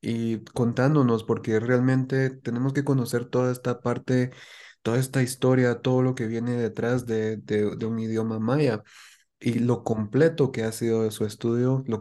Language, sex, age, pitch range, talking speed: English, male, 20-39, 110-125 Hz, 170 wpm